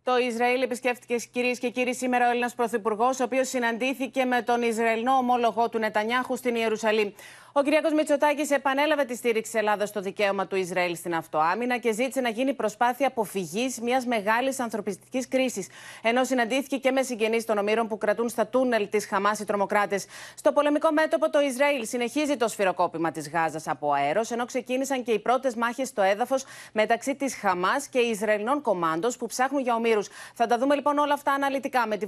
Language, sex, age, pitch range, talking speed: Greek, female, 30-49, 220-270 Hz, 185 wpm